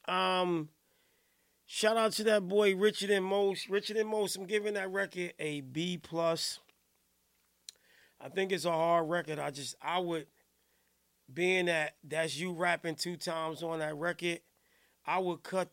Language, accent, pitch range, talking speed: English, American, 125-170 Hz, 160 wpm